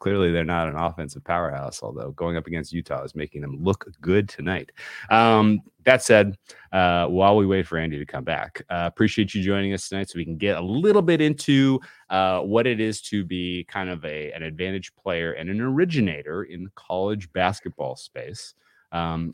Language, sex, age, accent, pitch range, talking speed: English, male, 30-49, American, 80-105 Hz, 195 wpm